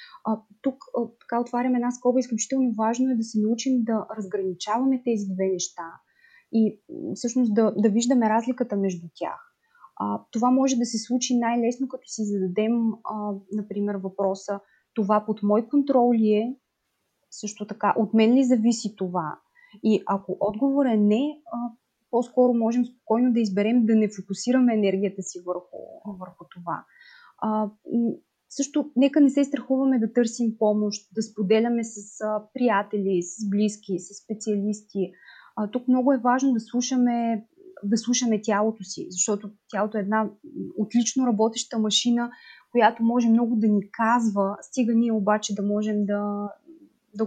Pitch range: 205-245 Hz